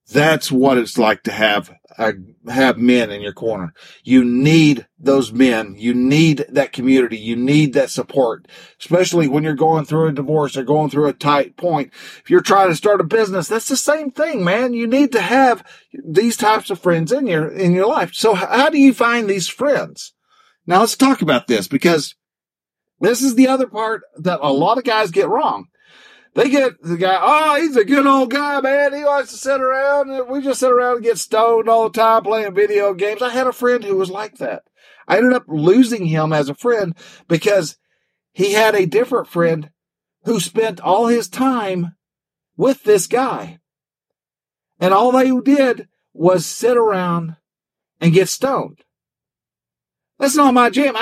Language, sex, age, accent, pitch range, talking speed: English, male, 50-69, American, 155-255 Hz, 190 wpm